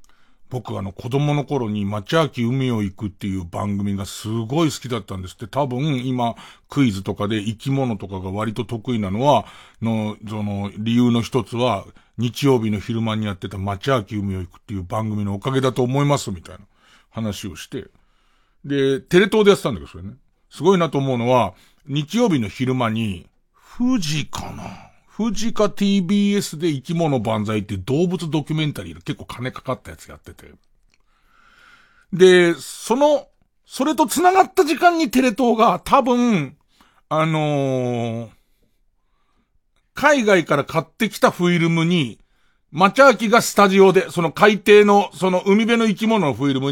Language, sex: Japanese, male